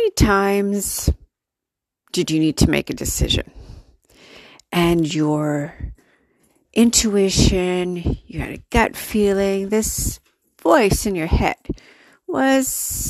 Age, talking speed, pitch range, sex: 50-69, 100 wpm, 185-245 Hz, female